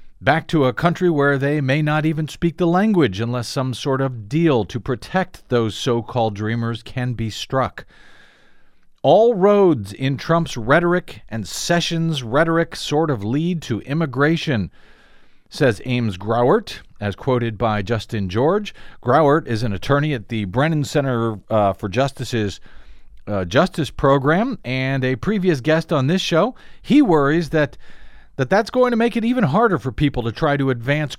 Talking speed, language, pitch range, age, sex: 160 wpm, English, 120-165 Hz, 50-69, male